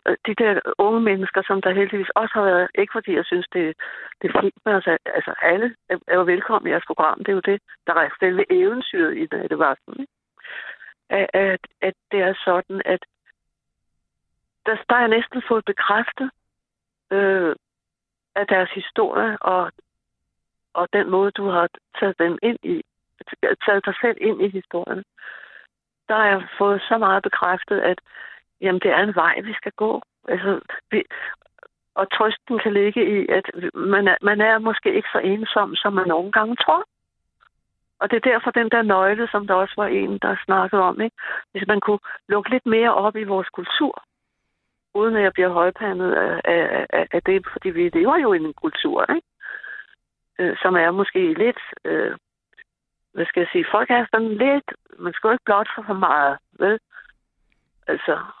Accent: native